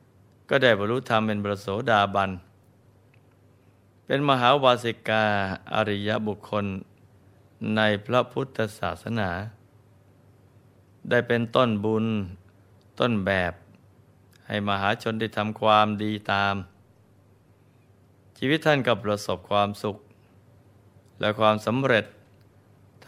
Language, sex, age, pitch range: Thai, male, 20-39, 100-115 Hz